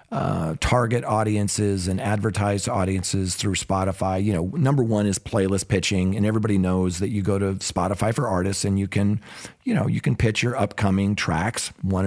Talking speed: 185 wpm